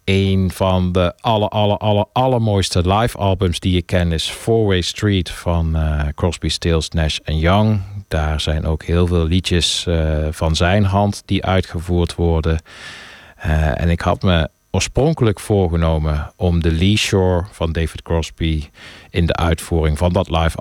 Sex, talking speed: male, 165 wpm